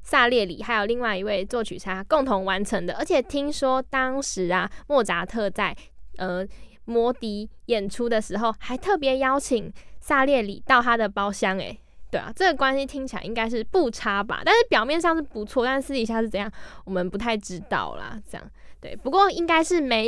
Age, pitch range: 10-29, 200-260 Hz